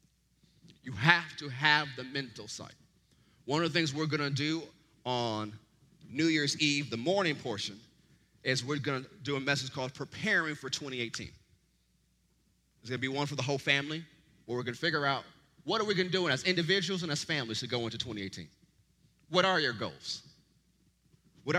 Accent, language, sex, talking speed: American, English, male, 190 wpm